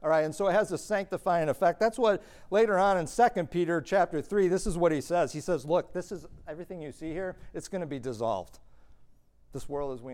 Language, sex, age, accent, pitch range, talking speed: English, male, 50-69, American, 125-165 Hz, 245 wpm